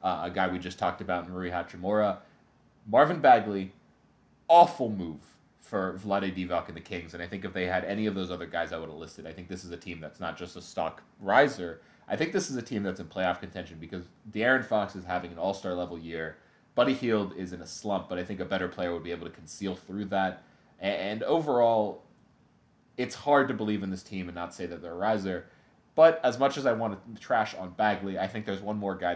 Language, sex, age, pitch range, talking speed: English, male, 30-49, 90-105 Hz, 240 wpm